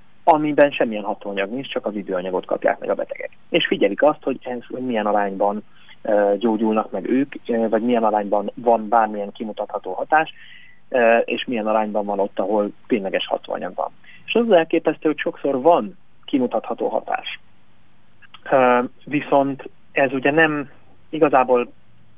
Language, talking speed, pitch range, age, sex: Hungarian, 135 wpm, 110-140 Hz, 30-49, male